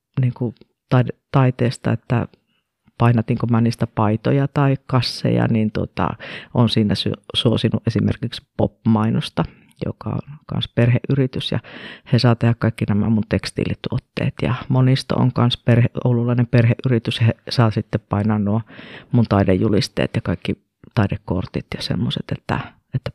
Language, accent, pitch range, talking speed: Finnish, native, 110-130 Hz, 125 wpm